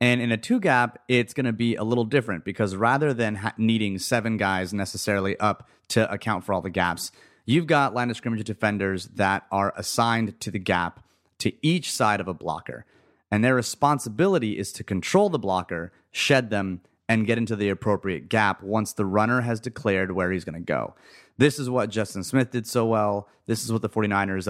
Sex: male